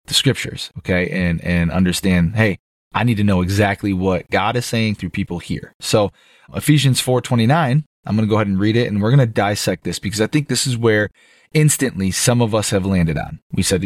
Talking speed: 220 wpm